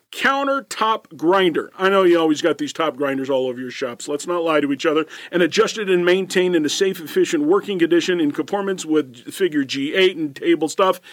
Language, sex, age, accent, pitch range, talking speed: English, male, 40-59, American, 155-225 Hz, 210 wpm